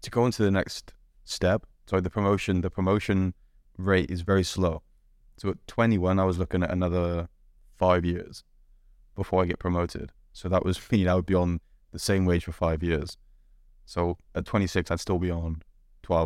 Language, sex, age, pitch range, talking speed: English, male, 20-39, 85-95 Hz, 185 wpm